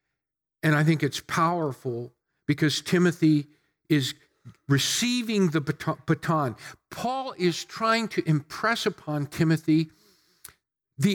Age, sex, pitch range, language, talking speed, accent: 50-69, male, 155-215 Hz, English, 100 wpm, American